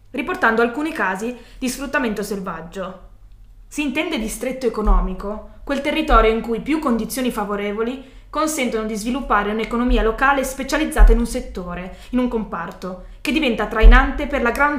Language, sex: Italian, female